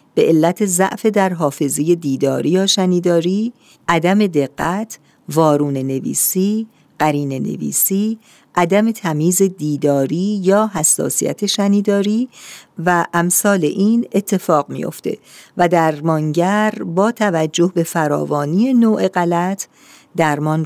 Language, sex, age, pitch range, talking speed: Persian, female, 50-69, 155-210 Hz, 100 wpm